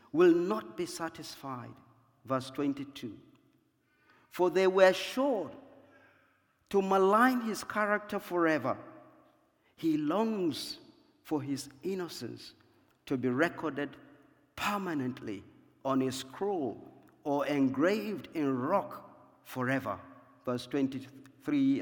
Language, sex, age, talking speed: English, male, 50-69, 95 wpm